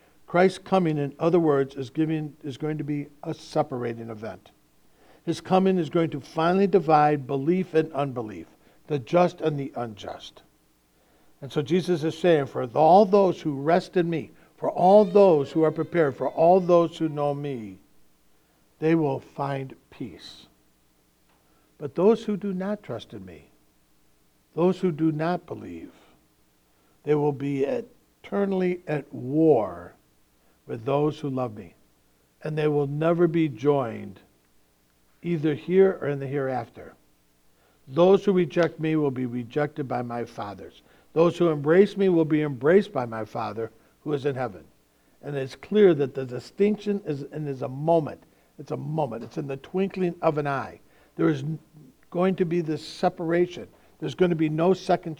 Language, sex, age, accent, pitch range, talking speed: English, male, 60-79, American, 125-170 Hz, 165 wpm